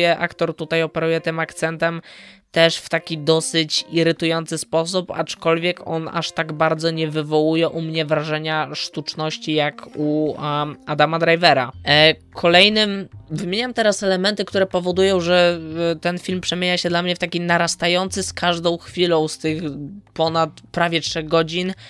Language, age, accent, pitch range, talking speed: Polish, 20-39, native, 160-175 Hz, 140 wpm